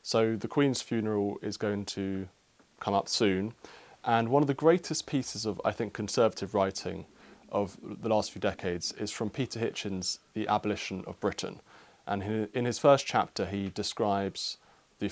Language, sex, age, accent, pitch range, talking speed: English, male, 30-49, British, 100-130 Hz, 165 wpm